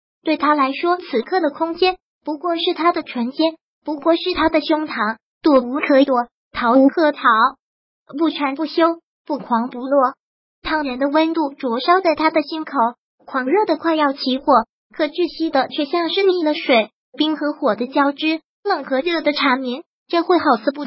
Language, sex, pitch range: Chinese, male, 270-330 Hz